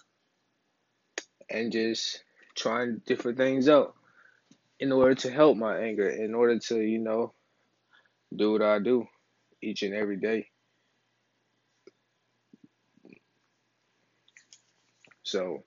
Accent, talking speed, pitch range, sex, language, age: American, 100 wpm, 100-115 Hz, male, English, 20-39